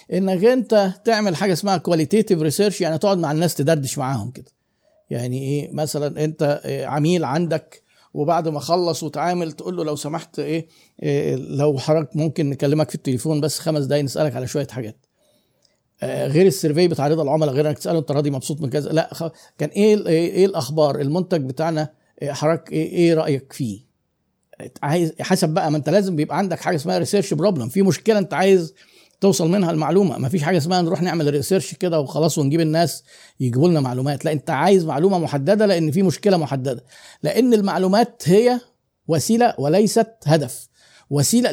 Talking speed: 175 wpm